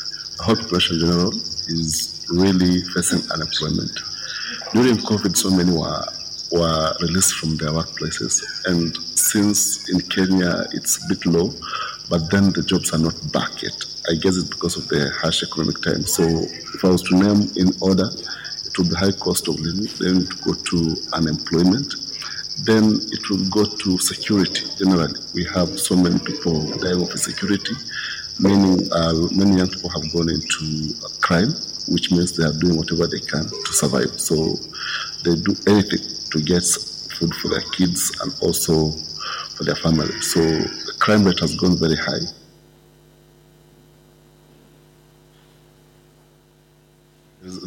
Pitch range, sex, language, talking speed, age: 80-95 Hz, male, German, 155 wpm, 50-69